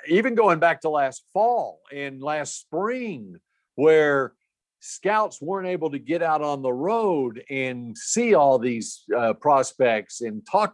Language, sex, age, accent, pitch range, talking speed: English, male, 50-69, American, 125-170 Hz, 150 wpm